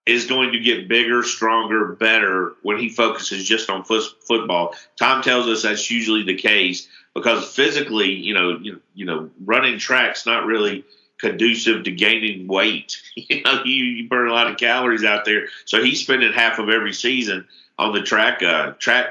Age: 50-69